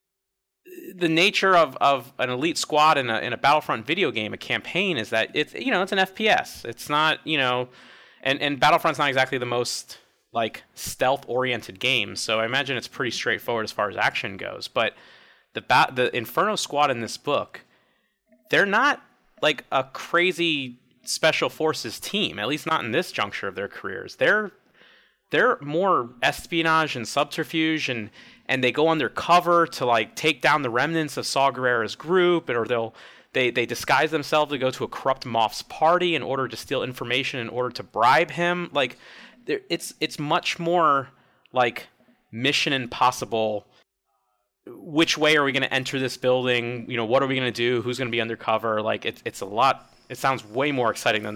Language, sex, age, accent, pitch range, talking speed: English, male, 30-49, American, 120-160 Hz, 185 wpm